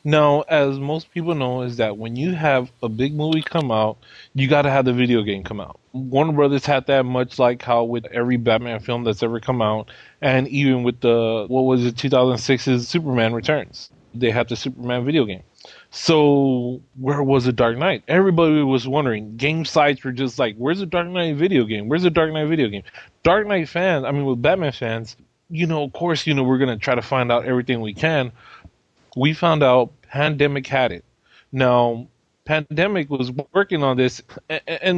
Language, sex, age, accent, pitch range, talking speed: English, male, 20-39, American, 125-155 Hz, 200 wpm